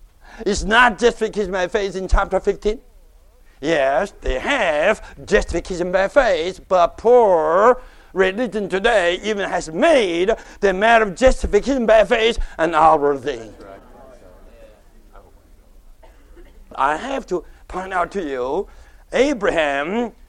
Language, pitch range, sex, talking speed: English, 155-235 Hz, male, 110 wpm